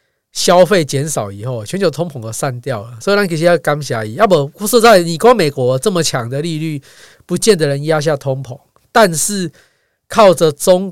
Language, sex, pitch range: Chinese, male, 130-175 Hz